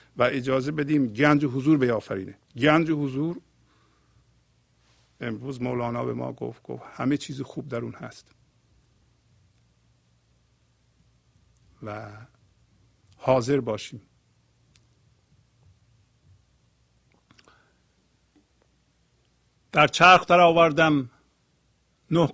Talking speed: 80 wpm